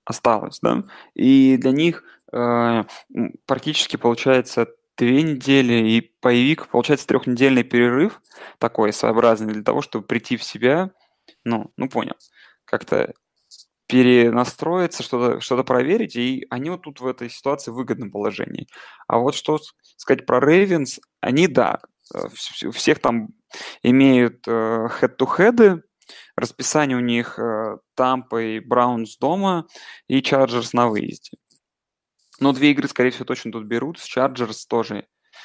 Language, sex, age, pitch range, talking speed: Russian, male, 20-39, 115-140 Hz, 130 wpm